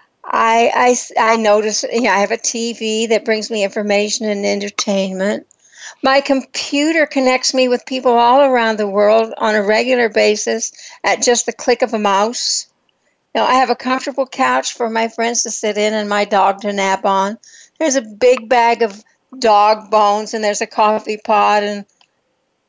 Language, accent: English, American